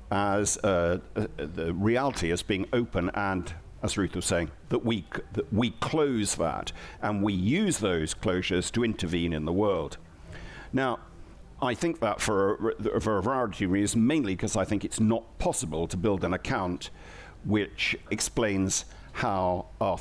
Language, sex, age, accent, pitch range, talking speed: English, male, 60-79, British, 95-120 Hz, 170 wpm